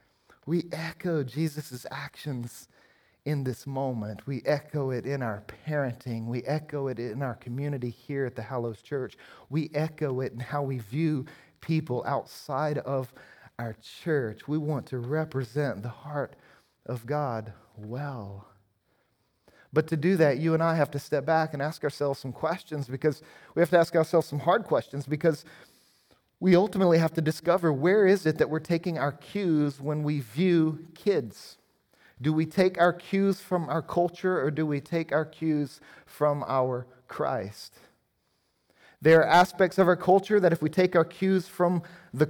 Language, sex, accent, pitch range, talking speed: English, male, American, 135-175 Hz, 170 wpm